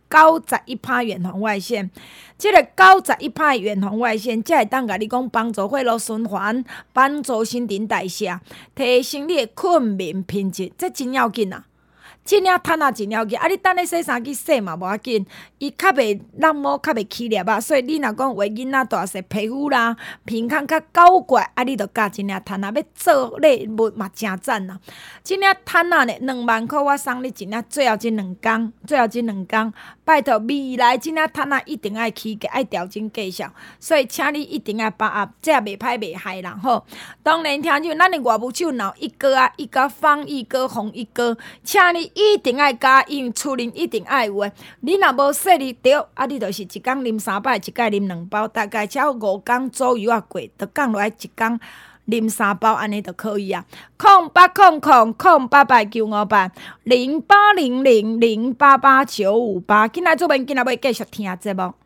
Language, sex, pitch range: Chinese, female, 215-285 Hz